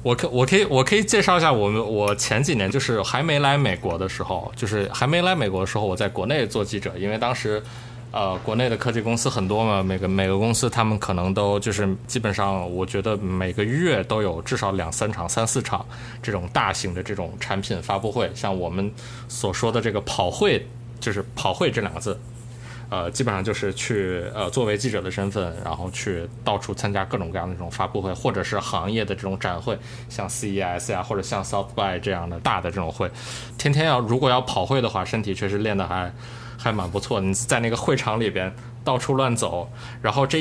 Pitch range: 100-120 Hz